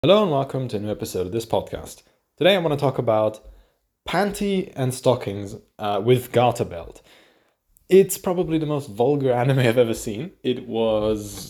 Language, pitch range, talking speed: English, 105-130 Hz, 175 wpm